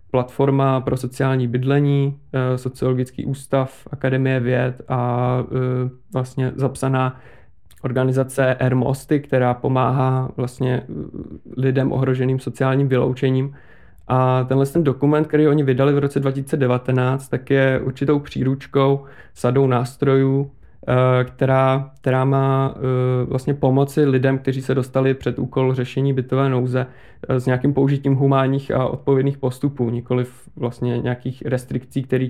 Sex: male